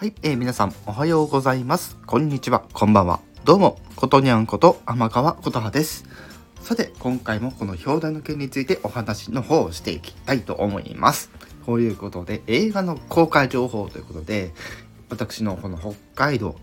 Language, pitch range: Japanese, 100-145 Hz